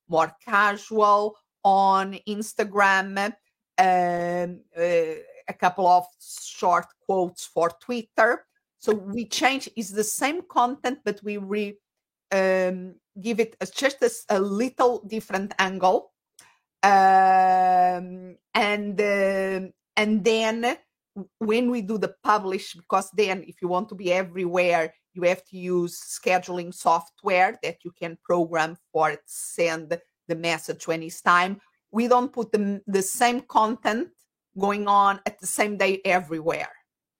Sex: female